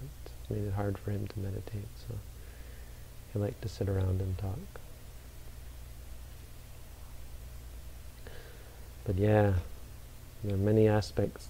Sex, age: male, 40-59